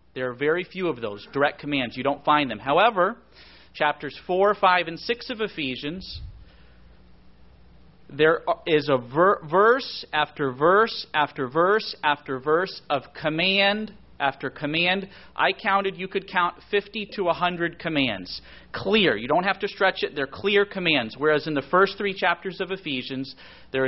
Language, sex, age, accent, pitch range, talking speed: English, male, 40-59, American, 130-175 Hz, 155 wpm